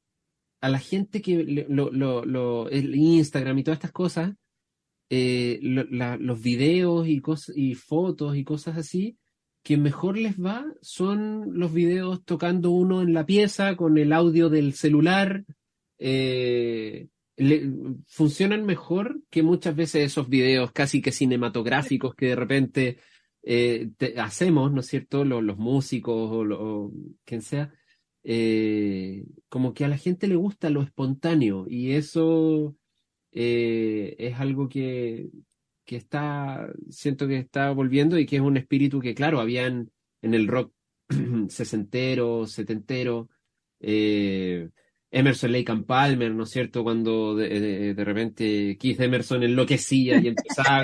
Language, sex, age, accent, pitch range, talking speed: English, male, 30-49, Argentinian, 120-160 Hz, 150 wpm